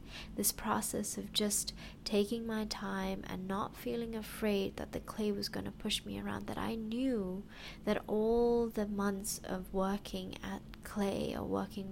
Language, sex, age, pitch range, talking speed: English, female, 20-39, 185-210 Hz, 165 wpm